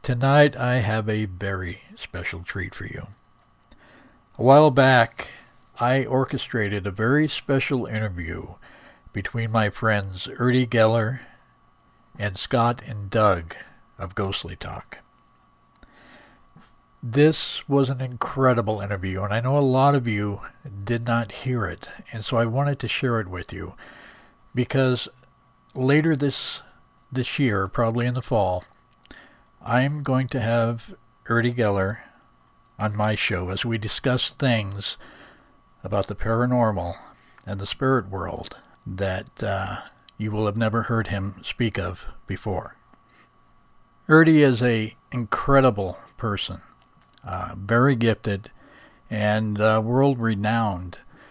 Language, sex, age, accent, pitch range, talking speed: English, male, 60-79, American, 100-130 Hz, 125 wpm